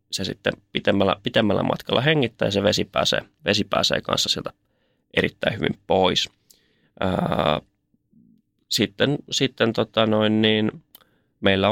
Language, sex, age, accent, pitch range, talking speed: Finnish, male, 20-39, native, 95-110 Hz, 125 wpm